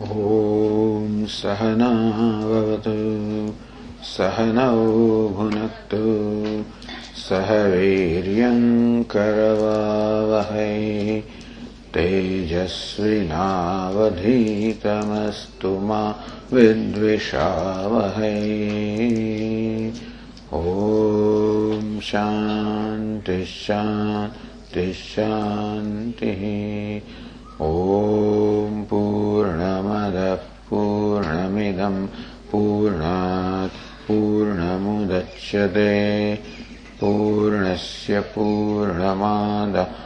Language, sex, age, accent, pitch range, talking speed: English, male, 50-69, Indian, 100-105 Hz, 30 wpm